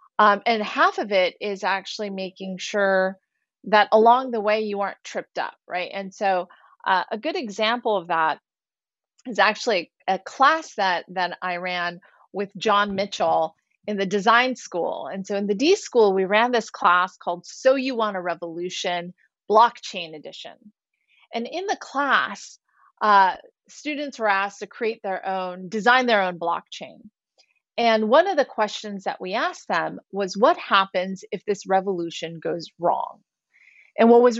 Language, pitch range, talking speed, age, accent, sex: English, 190-235 Hz, 165 wpm, 30-49, American, female